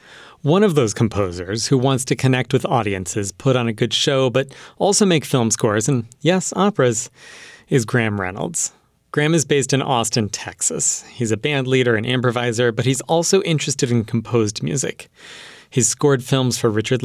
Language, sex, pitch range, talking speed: English, male, 115-145 Hz, 175 wpm